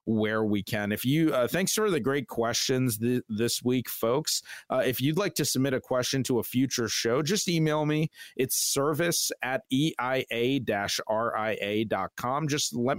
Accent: American